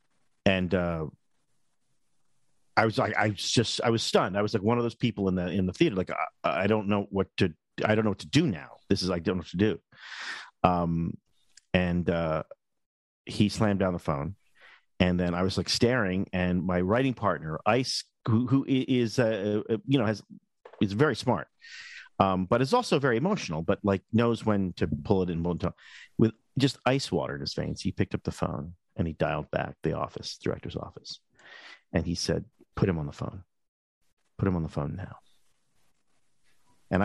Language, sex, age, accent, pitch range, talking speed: English, male, 40-59, American, 90-110 Hz, 200 wpm